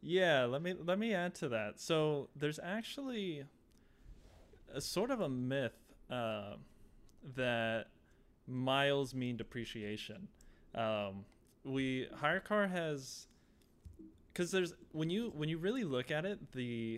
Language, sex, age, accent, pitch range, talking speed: English, male, 20-39, American, 110-150 Hz, 130 wpm